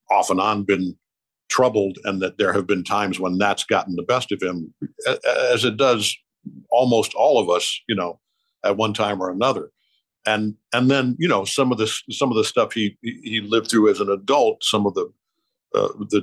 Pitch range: 100-125 Hz